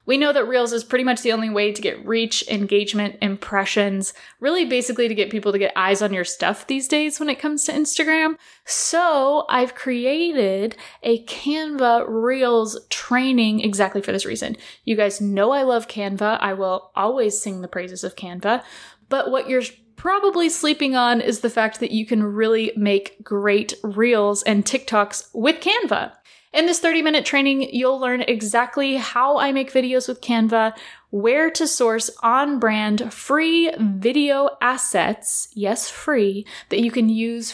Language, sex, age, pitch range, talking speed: English, female, 10-29, 210-280 Hz, 165 wpm